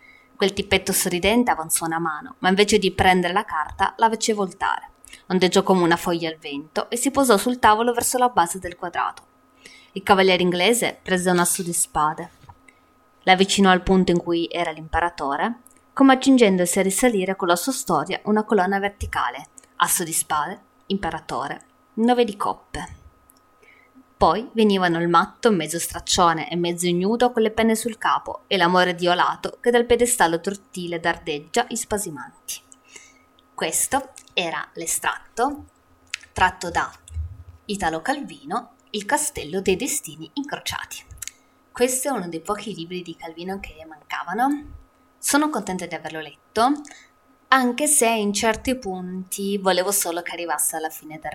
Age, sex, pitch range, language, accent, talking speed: 20-39, female, 170-235 Hz, Italian, native, 150 wpm